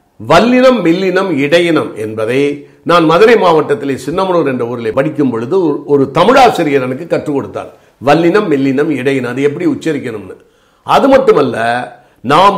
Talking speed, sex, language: 125 wpm, male, Tamil